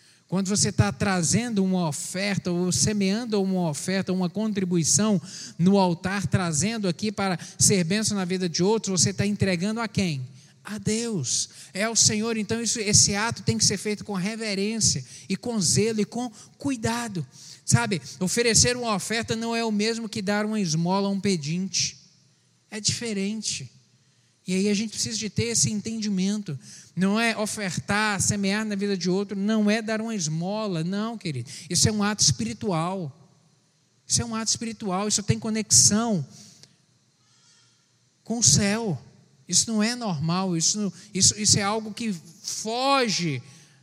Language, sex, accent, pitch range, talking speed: Portuguese, male, Brazilian, 160-215 Hz, 160 wpm